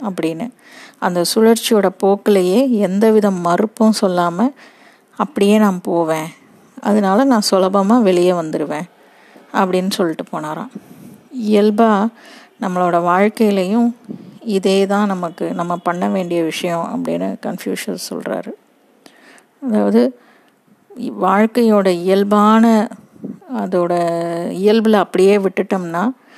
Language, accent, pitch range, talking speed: Tamil, native, 190-230 Hz, 85 wpm